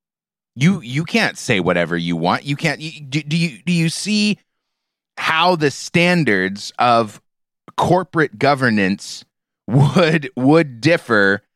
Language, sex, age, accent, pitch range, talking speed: English, male, 30-49, American, 120-185 Hz, 130 wpm